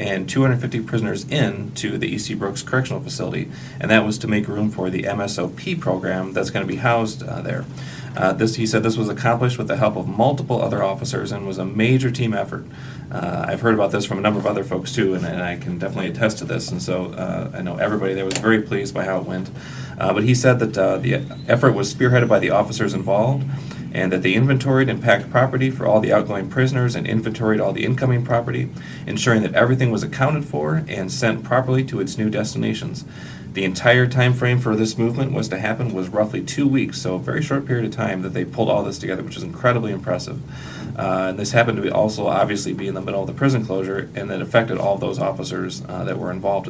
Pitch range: 100-130 Hz